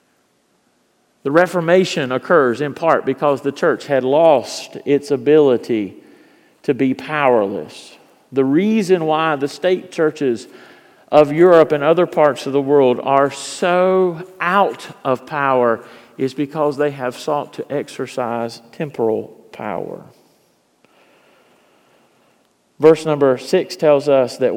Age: 40-59